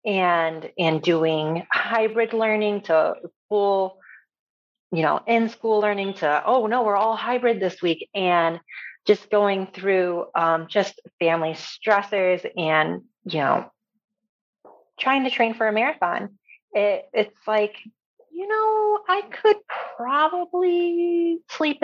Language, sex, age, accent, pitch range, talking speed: English, female, 30-49, American, 175-240 Hz, 125 wpm